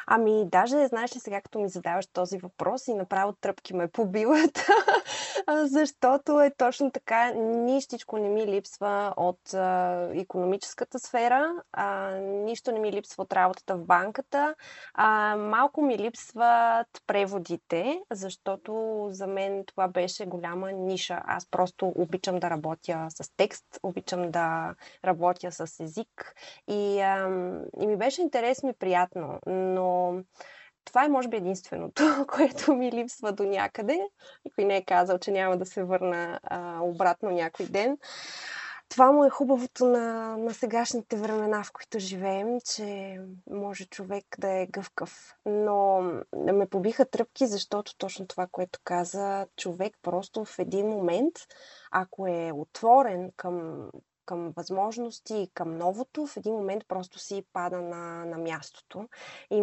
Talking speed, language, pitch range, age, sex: 145 wpm, Bulgarian, 185-235 Hz, 20-39, female